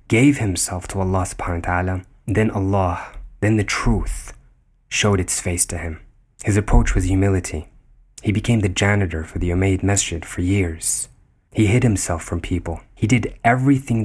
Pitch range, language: 90-110 Hz, English